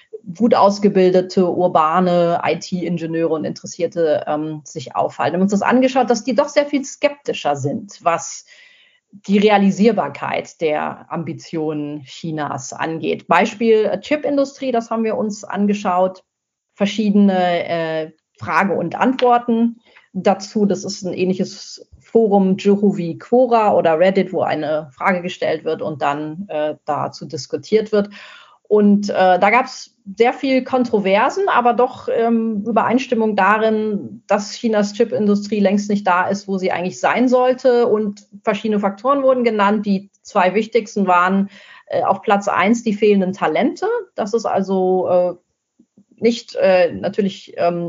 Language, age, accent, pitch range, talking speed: English, 40-59, German, 180-230 Hz, 140 wpm